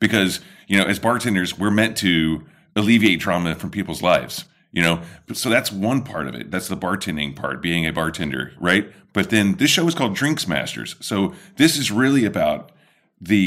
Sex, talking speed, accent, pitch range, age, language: male, 195 wpm, American, 80-110 Hz, 30-49, English